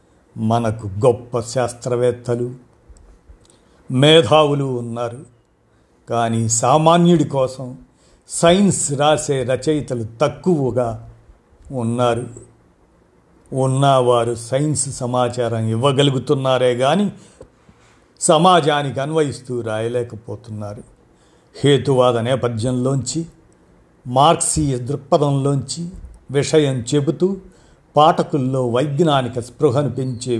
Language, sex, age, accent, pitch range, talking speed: Telugu, male, 50-69, native, 120-145 Hz, 60 wpm